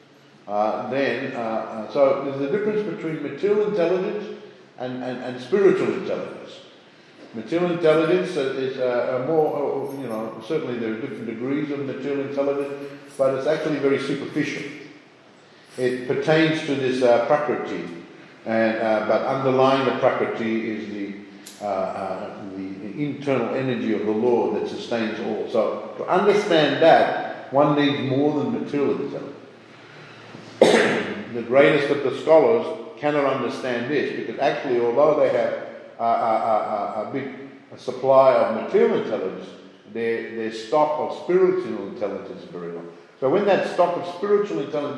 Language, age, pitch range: English, 60-79, 115-150 Hz